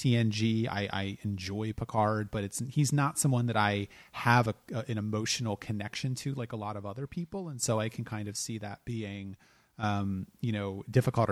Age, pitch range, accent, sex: 30-49, 105-130 Hz, American, male